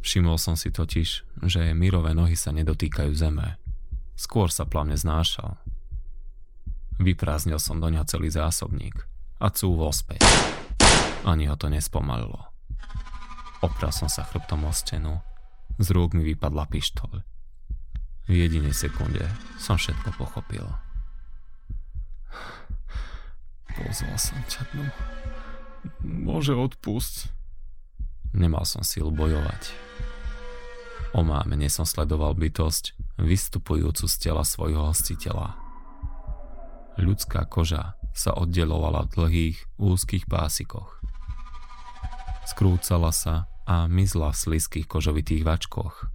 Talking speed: 105 wpm